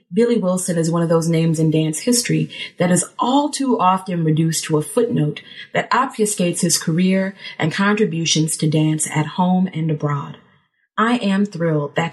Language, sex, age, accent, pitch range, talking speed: English, female, 30-49, American, 160-205 Hz, 175 wpm